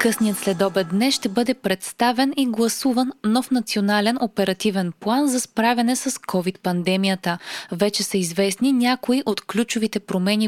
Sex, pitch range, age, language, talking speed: female, 195-255 Hz, 20-39, Bulgarian, 130 wpm